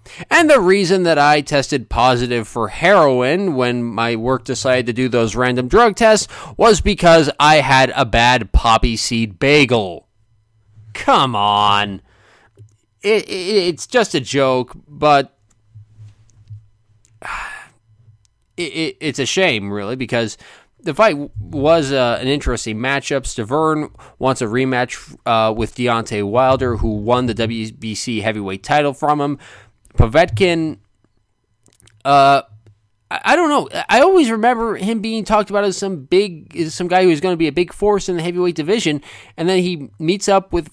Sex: male